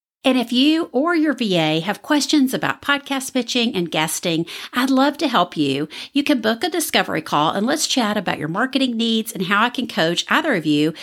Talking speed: 210 wpm